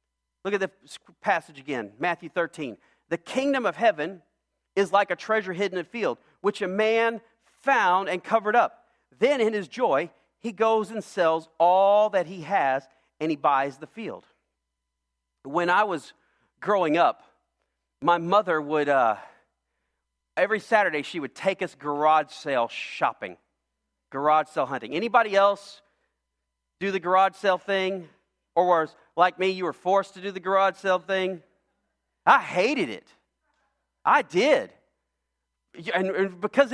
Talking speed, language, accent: 150 wpm, English, American